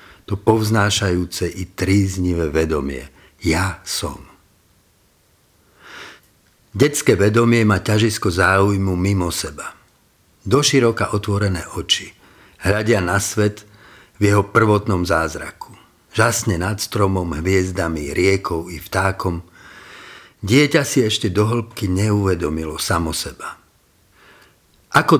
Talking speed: 95 wpm